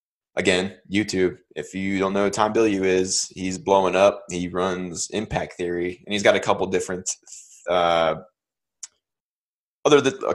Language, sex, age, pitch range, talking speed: English, male, 20-39, 90-110 Hz, 145 wpm